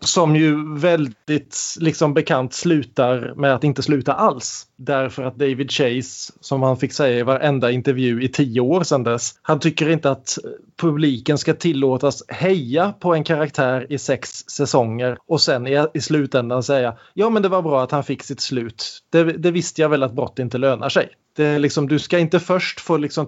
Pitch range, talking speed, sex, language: 125-160 Hz, 195 wpm, male, Swedish